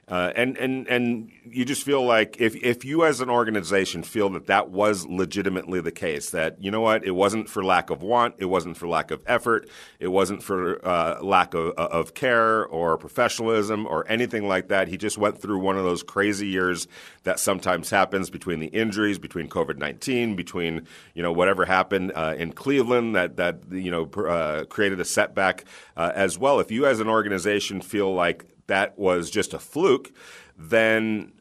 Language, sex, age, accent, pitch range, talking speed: English, male, 40-59, American, 95-110 Hz, 195 wpm